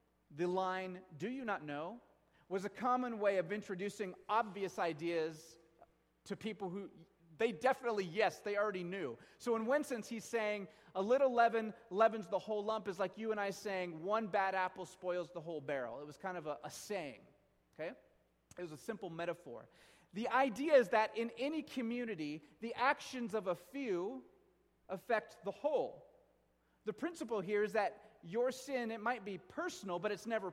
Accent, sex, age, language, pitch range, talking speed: American, male, 30-49, English, 185-230 Hz, 175 wpm